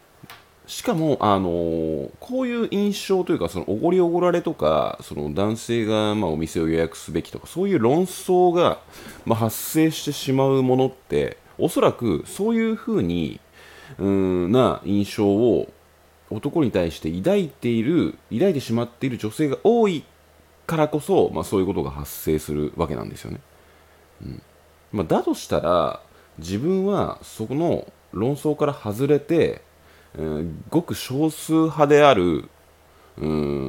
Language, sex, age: Japanese, male, 30-49